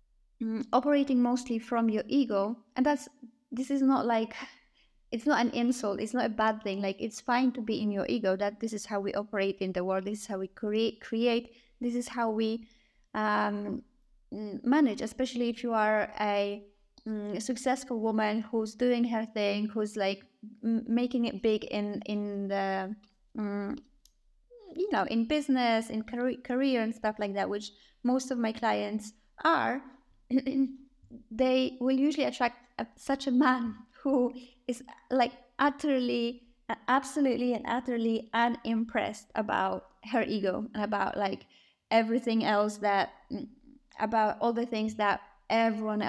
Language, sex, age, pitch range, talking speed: English, female, 20-39, 215-255 Hz, 150 wpm